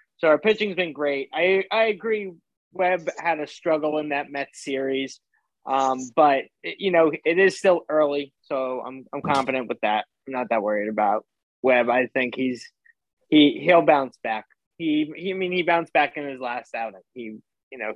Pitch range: 130-185 Hz